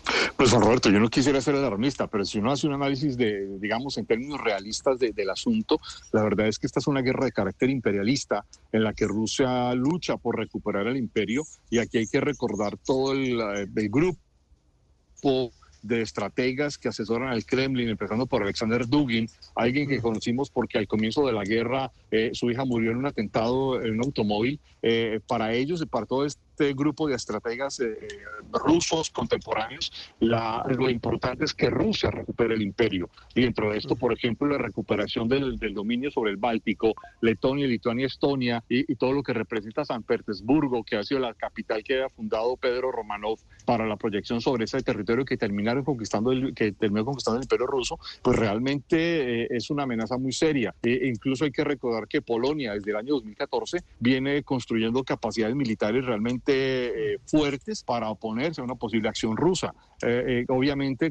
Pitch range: 110-140 Hz